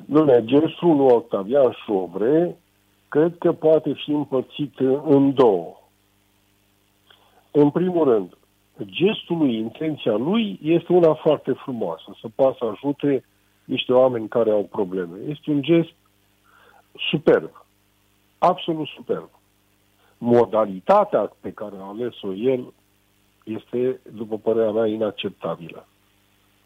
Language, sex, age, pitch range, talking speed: Romanian, male, 50-69, 100-150 Hz, 110 wpm